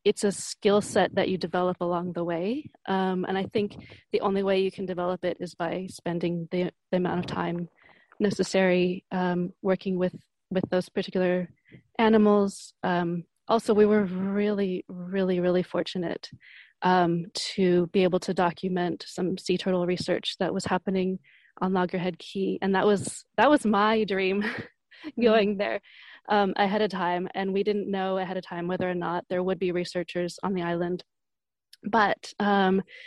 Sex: female